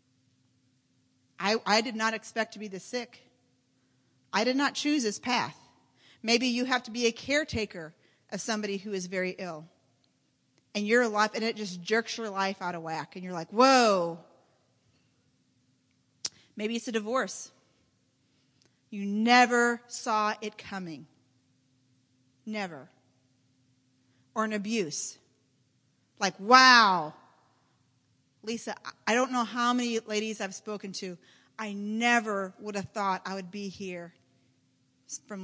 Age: 40-59